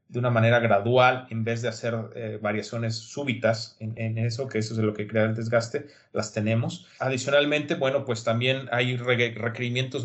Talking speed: 190 wpm